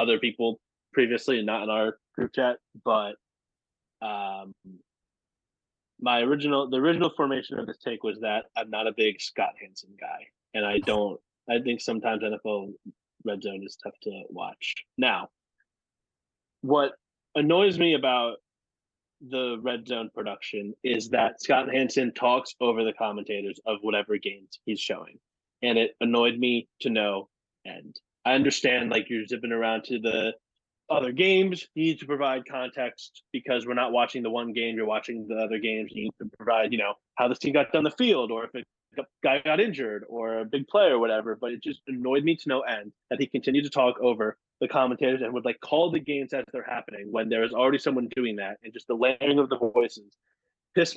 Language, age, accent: English, 20-39, American